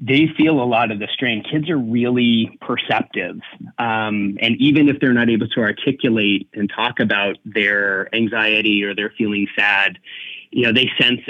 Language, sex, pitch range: English, male, 105-125 Hz